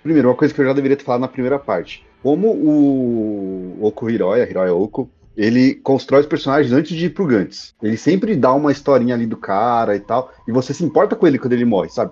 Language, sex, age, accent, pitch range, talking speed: Portuguese, male, 30-49, Brazilian, 115-150 Hz, 235 wpm